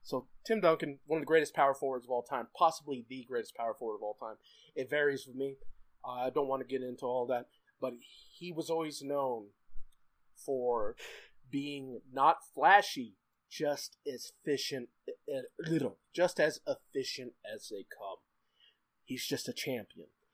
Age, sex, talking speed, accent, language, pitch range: 30-49, male, 165 wpm, American, English, 130-185 Hz